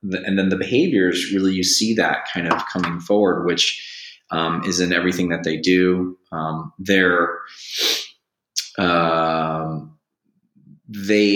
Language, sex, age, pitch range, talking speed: English, male, 30-49, 80-95 Hz, 125 wpm